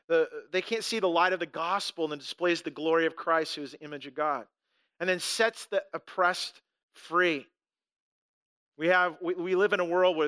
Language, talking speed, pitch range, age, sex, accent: English, 215 wpm, 160-190 Hz, 40-59, male, American